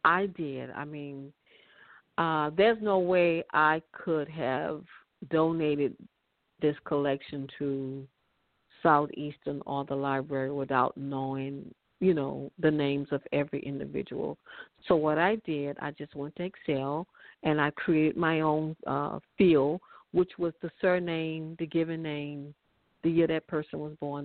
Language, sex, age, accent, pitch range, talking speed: English, female, 50-69, American, 145-165 Hz, 140 wpm